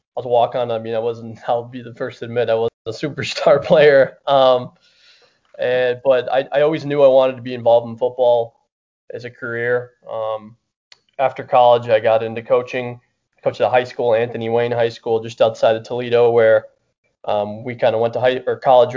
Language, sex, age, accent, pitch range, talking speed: English, male, 20-39, American, 110-130 Hz, 210 wpm